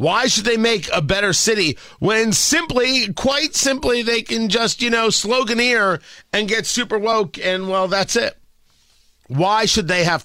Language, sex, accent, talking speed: English, male, American, 170 wpm